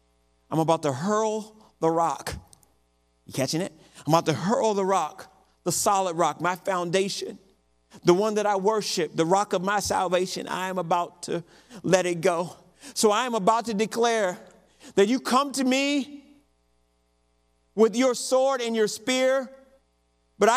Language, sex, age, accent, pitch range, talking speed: English, male, 50-69, American, 205-290 Hz, 160 wpm